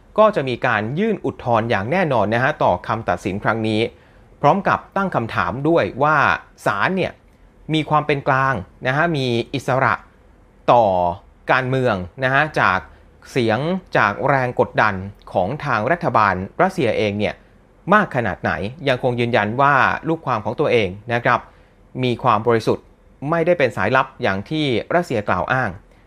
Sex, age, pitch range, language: male, 30-49, 105-155 Hz, Thai